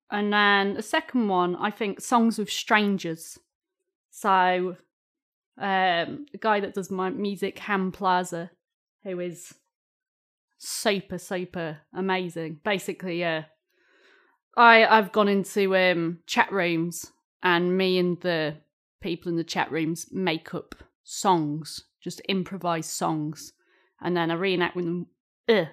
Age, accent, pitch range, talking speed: 30-49, British, 170-215 Hz, 135 wpm